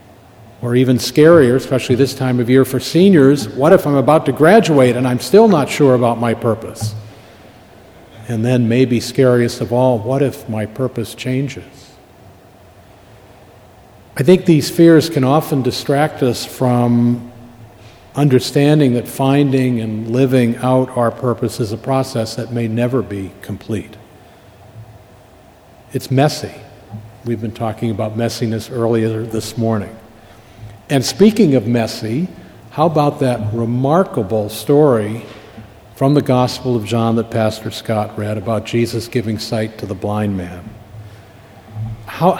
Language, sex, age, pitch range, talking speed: English, male, 50-69, 110-135 Hz, 135 wpm